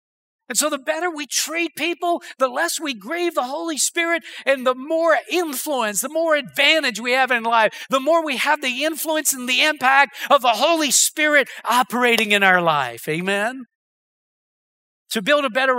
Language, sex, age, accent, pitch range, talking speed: English, male, 50-69, American, 250-315 Hz, 180 wpm